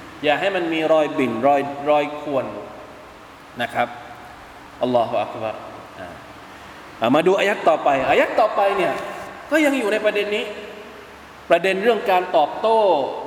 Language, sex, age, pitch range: Thai, male, 20-39, 160-265 Hz